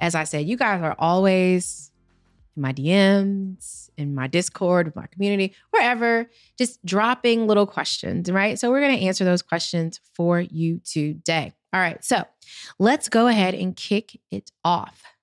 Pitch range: 165-220 Hz